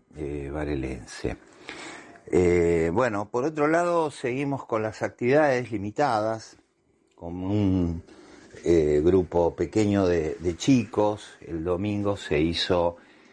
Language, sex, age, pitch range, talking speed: Spanish, male, 50-69, 80-105 Hz, 110 wpm